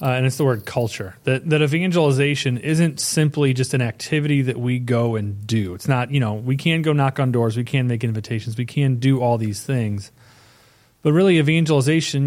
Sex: male